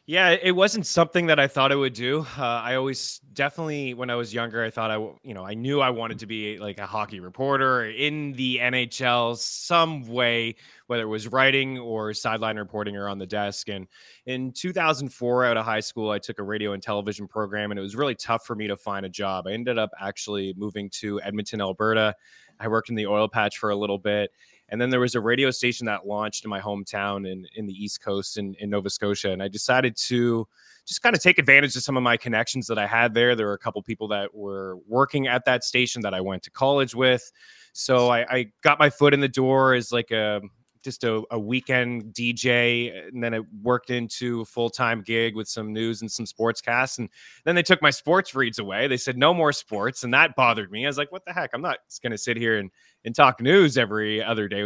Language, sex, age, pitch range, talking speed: English, male, 20-39, 105-130 Hz, 240 wpm